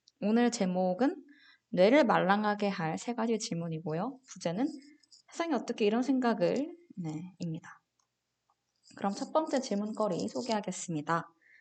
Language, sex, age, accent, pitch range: Korean, female, 20-39, native, 175-260 Hz